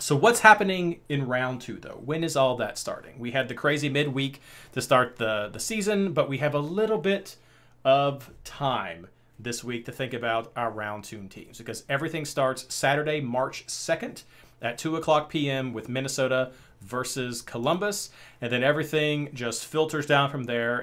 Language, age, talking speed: English, 40-59, 175 wpm